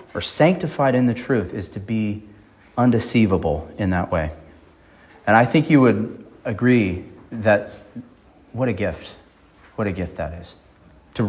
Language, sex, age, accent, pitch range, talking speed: English, male, 30-49, American, 90-120 Hz, 150 wpm